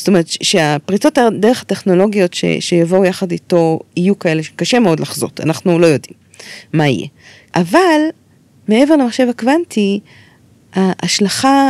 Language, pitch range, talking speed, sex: Hebrew, 175-265 Hz, 125 wpm, female